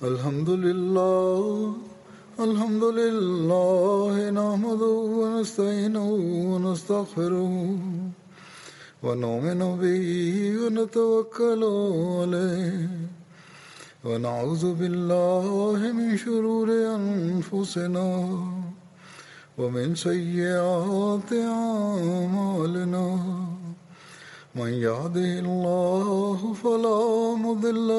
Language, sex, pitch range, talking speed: Arabic, male, 175-215 Hz, 50 wpm